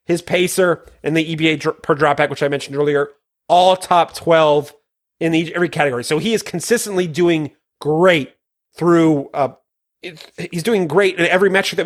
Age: 30-49